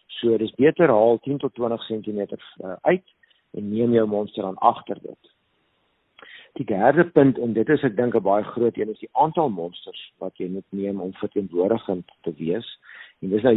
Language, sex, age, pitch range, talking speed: Swedish, male, 50-69, 105-125 Hz, 200 wpm